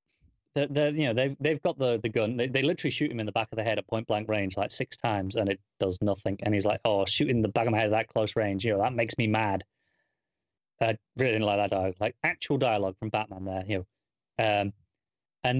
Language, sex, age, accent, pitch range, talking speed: English, male, 30-49, British, 110-145 Hz, 260 wpm